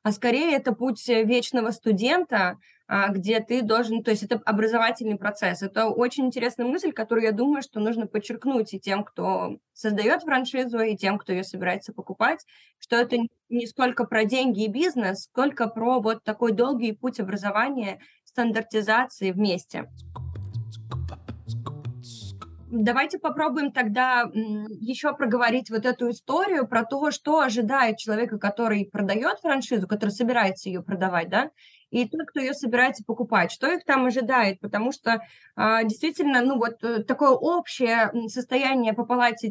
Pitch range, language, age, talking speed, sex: 210-250 Hz, Russian, 20-39, 145 wpm, female